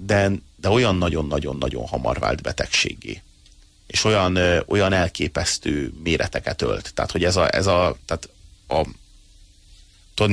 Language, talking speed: Hungarian, 115 wpm